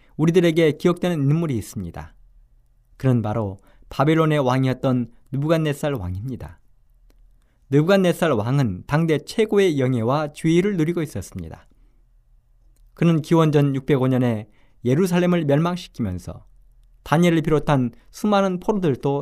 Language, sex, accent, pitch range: Korean, male, native, 105-165 Hz